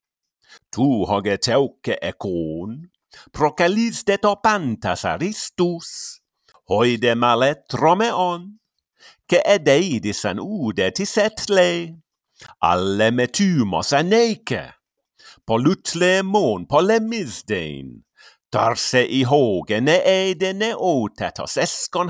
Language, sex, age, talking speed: English, male, 50-69, 95 wpm